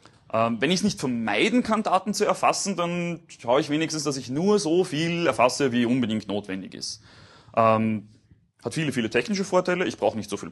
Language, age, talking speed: German, 30-49, 200 wpm